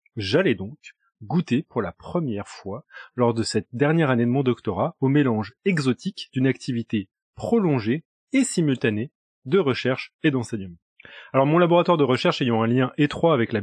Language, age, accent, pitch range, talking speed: French, 30-49, French, 115-150 Hz, 165 wpm